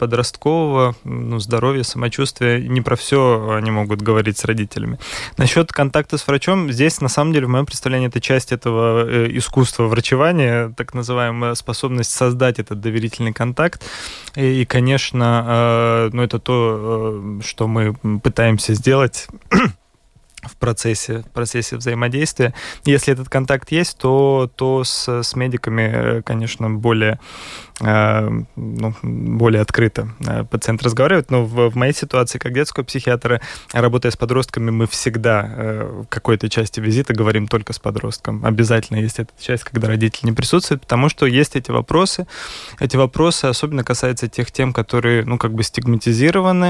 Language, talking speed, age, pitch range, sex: Russian, 150 wpm, 20-39, 115-130 Hz, male